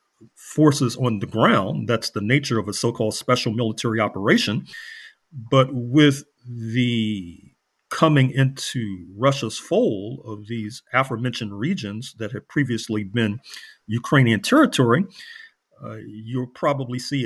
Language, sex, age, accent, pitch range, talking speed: English, male, 40-59, American, 115-145 Hz, 120 wpm